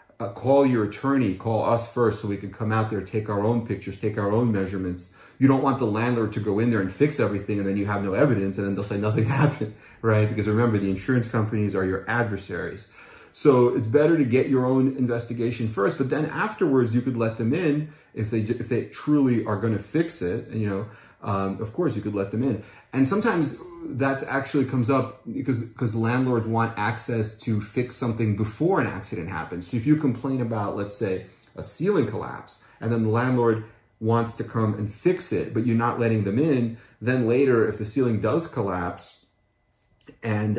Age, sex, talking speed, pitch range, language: 30-49, male, 210 wpm, 105-125 Hz, English